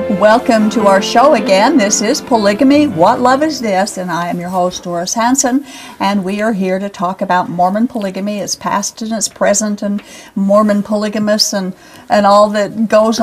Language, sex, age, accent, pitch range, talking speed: English, female, 50-69, American, 190-225 Hz, 185 wpm